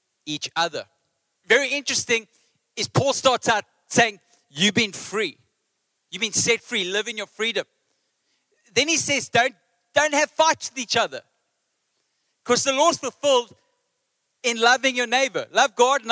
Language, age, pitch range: English, 40-59, 225-285 Hz